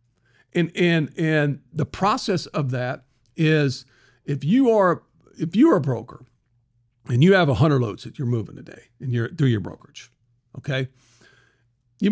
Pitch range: 125-165 Hz